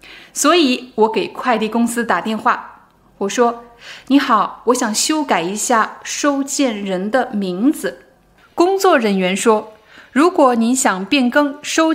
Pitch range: 205-270 Hz